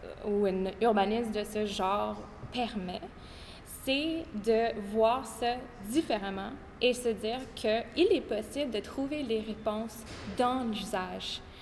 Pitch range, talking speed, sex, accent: 215-255 Hz, 125 wpm, female, Canadian